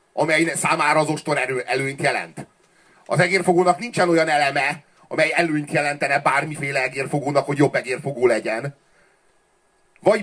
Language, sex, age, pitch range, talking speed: Hungarian, male, 40-59, 130-175 Hz, 130 wpm